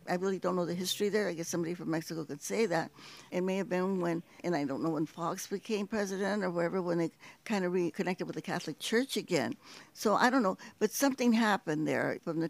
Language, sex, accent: English, female, American